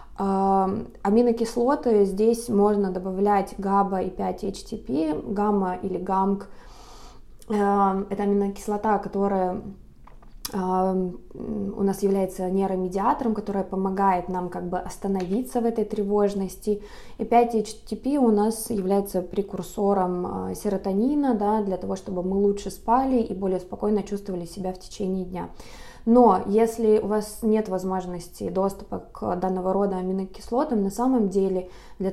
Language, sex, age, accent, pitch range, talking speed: Russian, female, 20-39, native, 185-210 Hz, 115 wpm